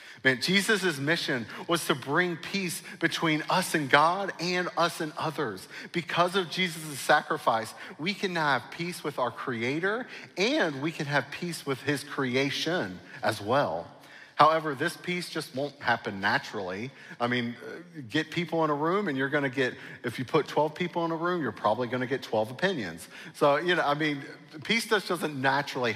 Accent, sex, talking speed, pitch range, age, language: American, male, 180 wpm, 115-160 Hz, 40-59, English